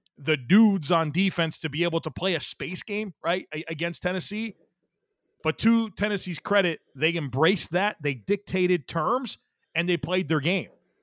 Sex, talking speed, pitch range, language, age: male, 165 wpm, 150-185 Hz, English, 30-49